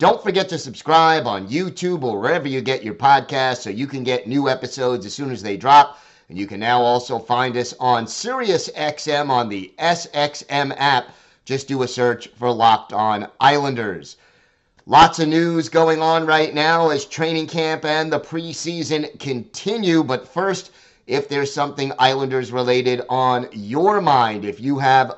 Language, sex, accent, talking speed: English, male, American, 170 wpm